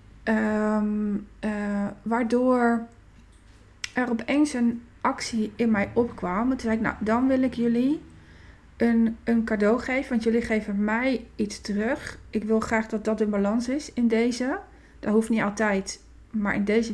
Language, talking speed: Dutch, 160 wpm